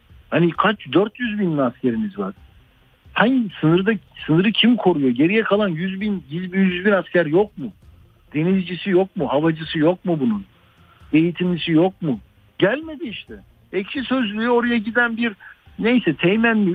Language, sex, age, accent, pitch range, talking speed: Turkish, male, 60-79, native, 150-205 Hz, 145 wpm